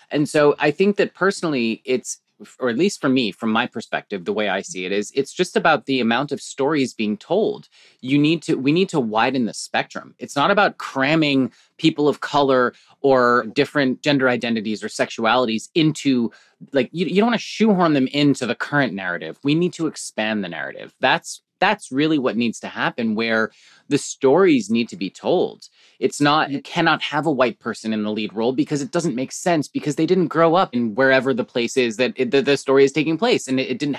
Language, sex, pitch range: English, male, 125-170 Hz